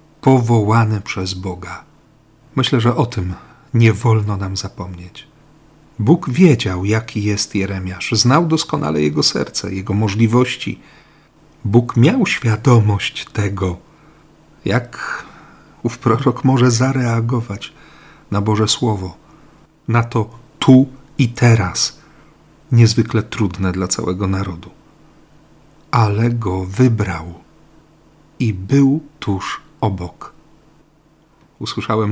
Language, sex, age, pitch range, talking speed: Polish, male, 50-69, 100-130 Hz, 95 wpm